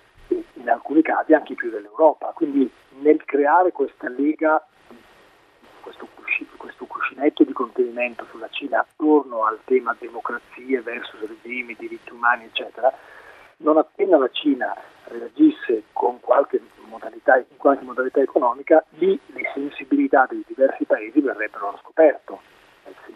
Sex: male